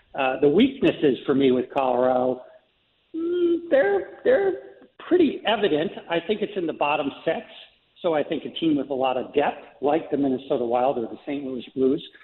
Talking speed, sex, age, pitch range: 180 wpm, male, 60-79, 135-165 Hz